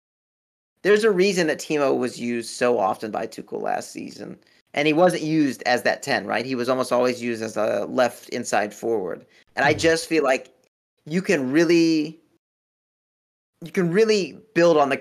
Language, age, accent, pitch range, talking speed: English, 30-49, American, 125-160 Hz, 180 wpm